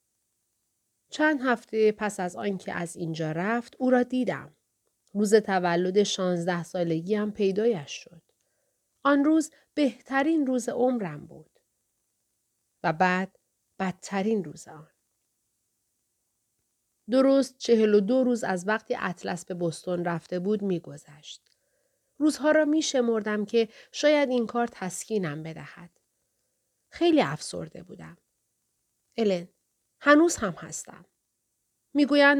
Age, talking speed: 40-59, 115 wpm